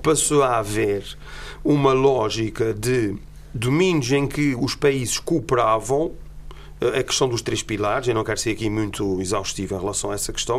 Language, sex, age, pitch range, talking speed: Portuguese, male, 40-59, 125-155 Hz, 165 wpm